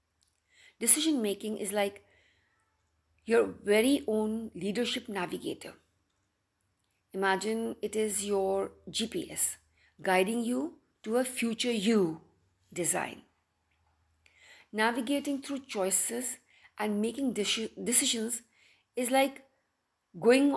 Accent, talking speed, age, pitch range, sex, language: Indian, 85 wpm, 50-69, 180-245 Hz, female, English